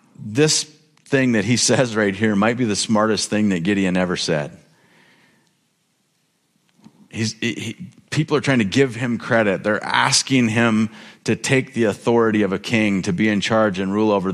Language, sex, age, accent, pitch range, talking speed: English, male, 40-59, American, 105-135 Hz, 170 wpm